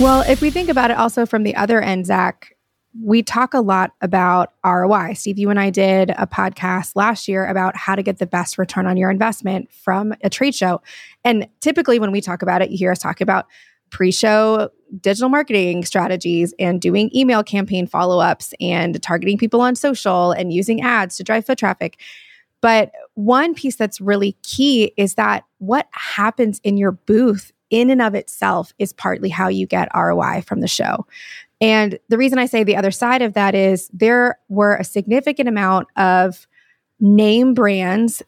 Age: 20-39